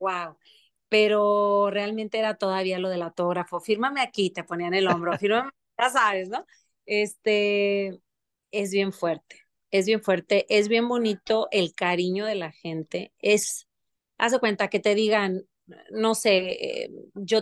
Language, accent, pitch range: Spanish, Mexican, 185-225 Hz